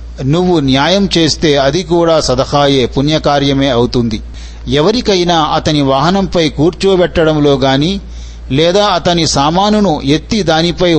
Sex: male